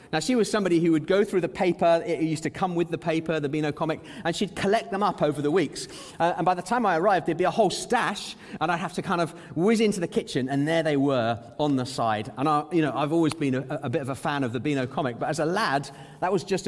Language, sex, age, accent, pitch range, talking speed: English, male, 30-49, British, 140-185 Hz, 290 wpm